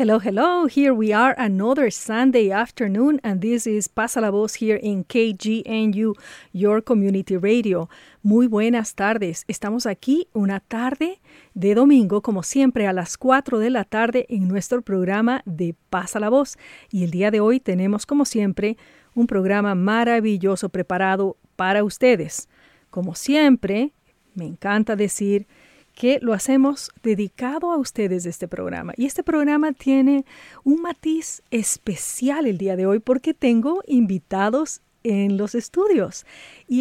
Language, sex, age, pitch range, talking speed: English, female, 40-59, 200-255 Hz, 145 wpm